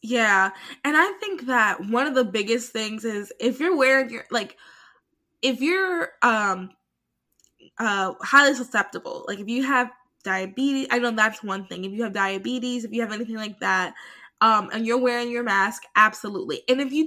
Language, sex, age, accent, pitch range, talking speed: English, female, 10-29, American, 215-270 Hz, 185 wpm